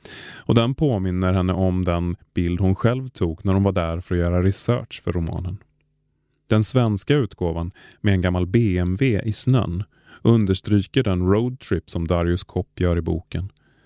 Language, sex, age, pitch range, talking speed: Swedish, male, 30-49, 90-110 Hz, 165 wpm